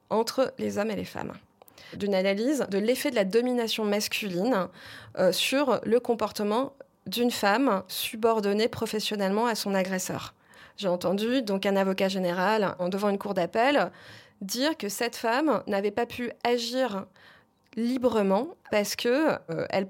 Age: 20-39